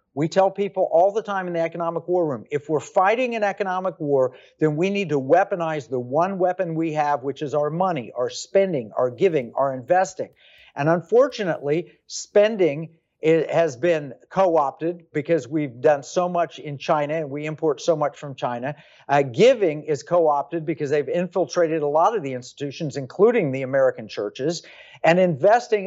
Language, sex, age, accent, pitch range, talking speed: English, male, 50-69, American, 150-190 Hz, 175 wpm